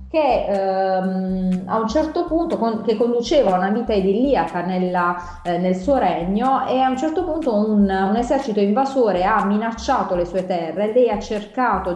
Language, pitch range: Italian, 175-230 Hz